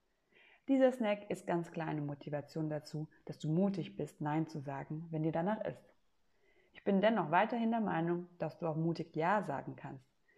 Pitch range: 150-195 Hz